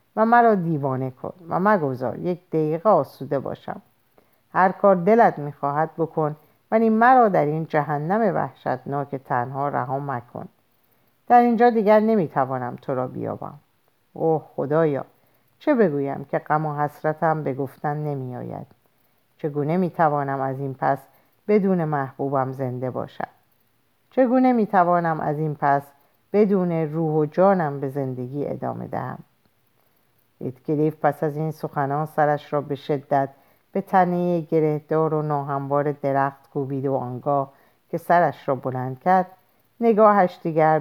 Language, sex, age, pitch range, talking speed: Persian, female, 50-69, 140-170 Hz, 130 wpm